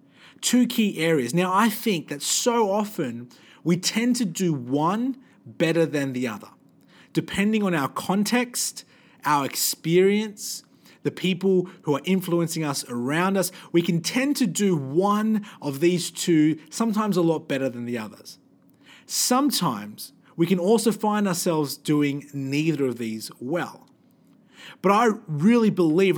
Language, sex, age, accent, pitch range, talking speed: English, male, 30-49, Australian, 150-205 Hz, 145 wpm